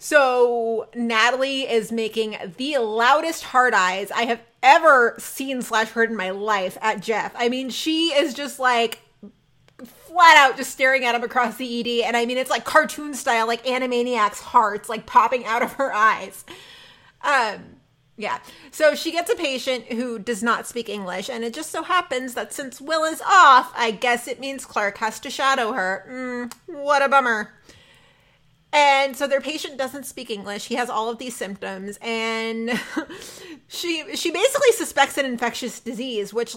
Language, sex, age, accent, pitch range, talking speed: English, female, 30-49, American, 225-295 Hz, 175 wpm